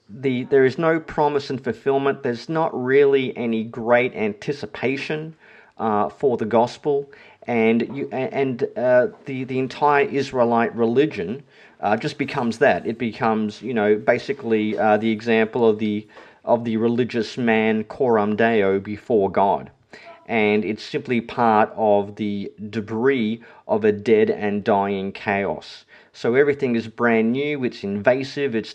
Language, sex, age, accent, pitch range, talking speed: English, male, 40-59, Australian, 110-140 Hz, 145 wpm